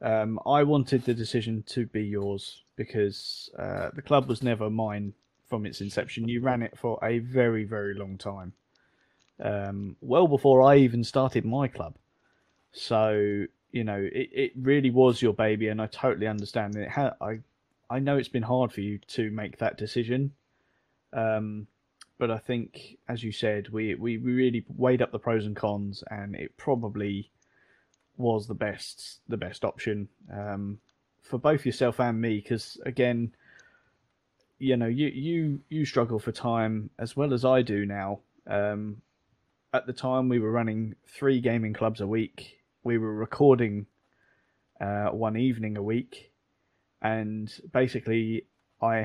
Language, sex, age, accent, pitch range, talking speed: English, male, 20-39, British, 105-125 Hz, 160 wpm